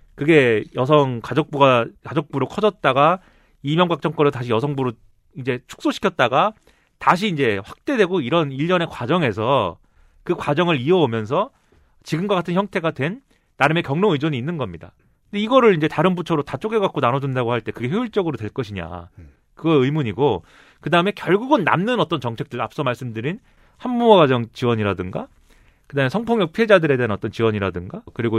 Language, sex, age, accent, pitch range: Korean, male, 30-49, native, 120-185 Hz